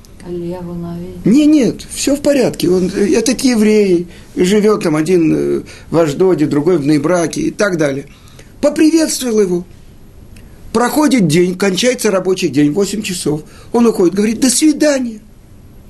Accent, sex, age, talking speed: native, male, 50-69, 125 wpm